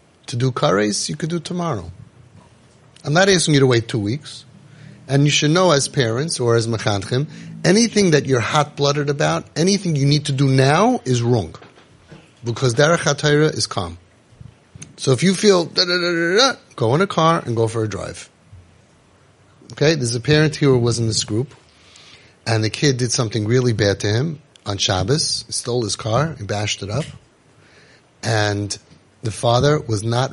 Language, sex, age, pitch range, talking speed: English, male, 30-49, 110-150 Hz, 175 wpm